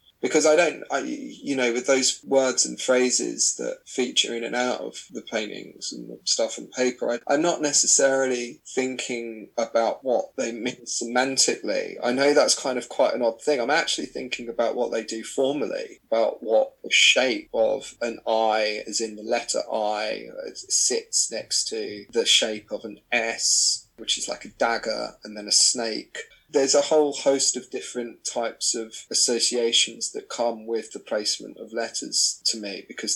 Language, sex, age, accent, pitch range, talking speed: English, male, 20-39, British, 115-135 Hz, 175 wpm